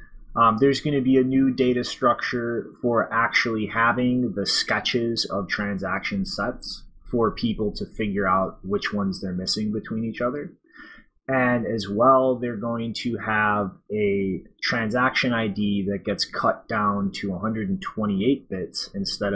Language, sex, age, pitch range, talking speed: English, male, 20-39, 100-120 Hz, 145 wpm